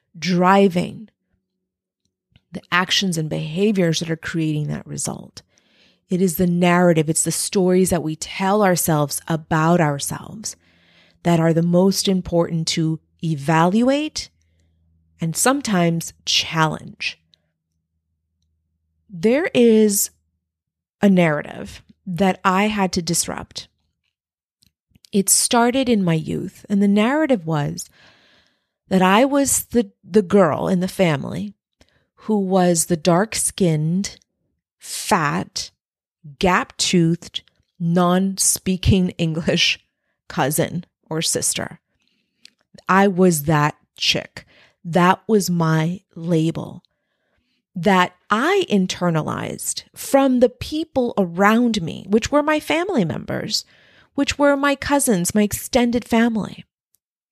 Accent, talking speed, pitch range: American, 105 wpm, 160-205 Hz